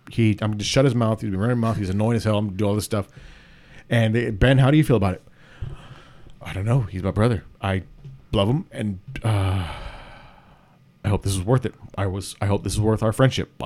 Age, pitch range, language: 30-49, 110-140 Hz, English